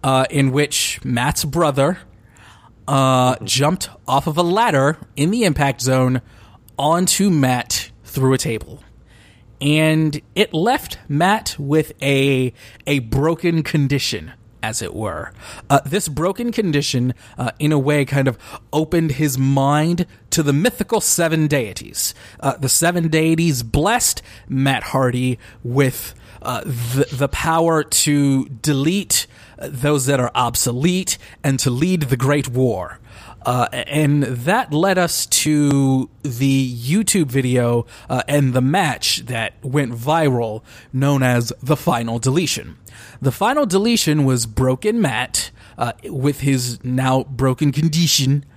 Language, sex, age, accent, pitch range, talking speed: English, male, 30-49, American, 120-155 Hz, 130 wpm